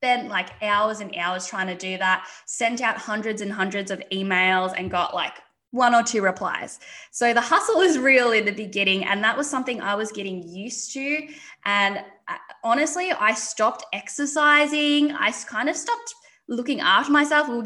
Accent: Australian